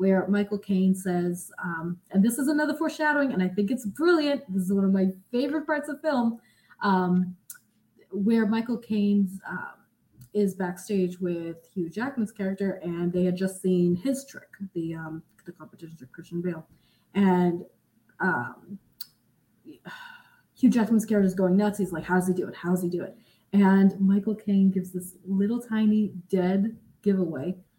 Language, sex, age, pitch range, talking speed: English, female, 20-39, 180-235 Hz, 170 wpm